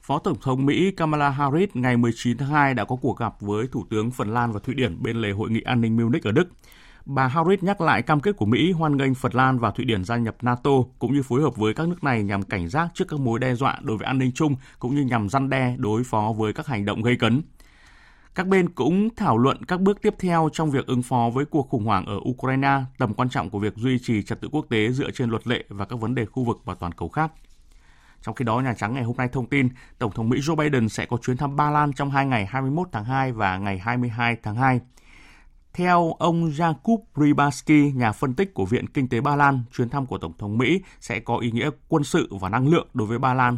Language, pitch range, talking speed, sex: Vietnamese, 115-145 Hz, 265 wpm, male